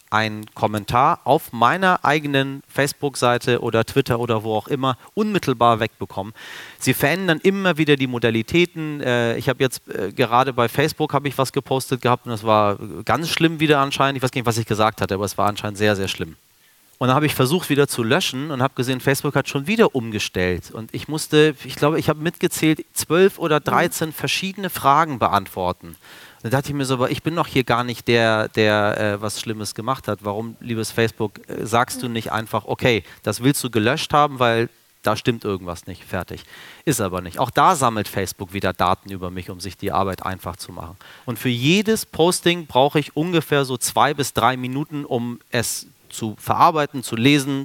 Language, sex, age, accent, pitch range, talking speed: German, male, 30-49, German, 110-145 Hz, 200 wpm